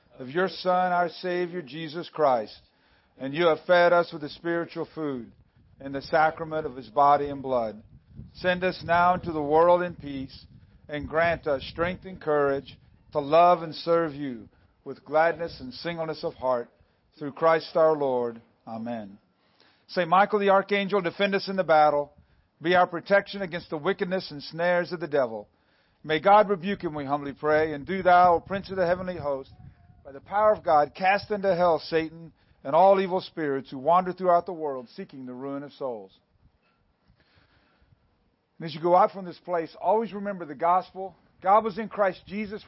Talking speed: 185 wpm